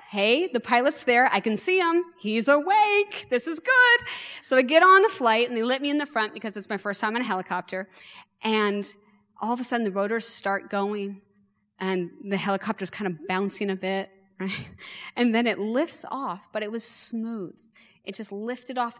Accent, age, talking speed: American, 30-49, 205 wpm